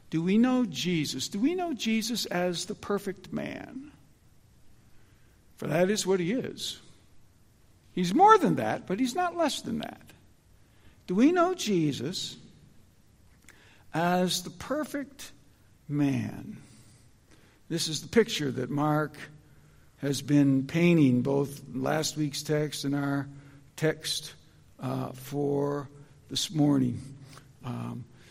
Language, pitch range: English, 135-175 Hz